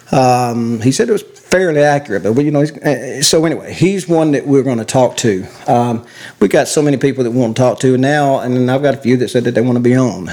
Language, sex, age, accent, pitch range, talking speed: English, male, 40-59, American, 125-145 Hz, 275 wpm